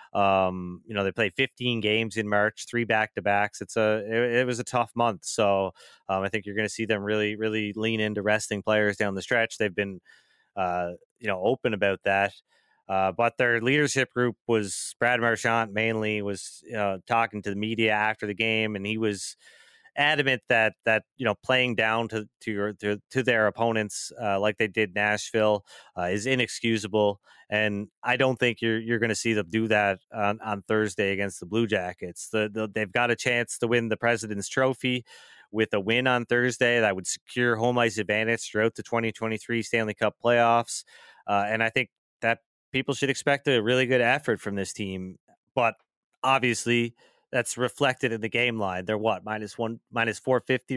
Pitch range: 105-120 Hz